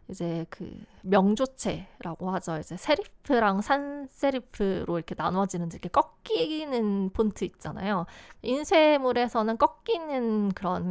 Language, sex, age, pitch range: Korean, female, 20-39, 185-255 Hz